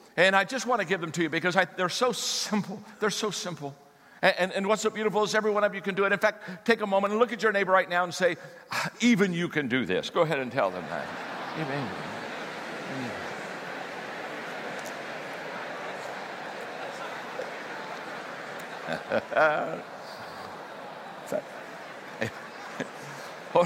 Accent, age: American, 60-79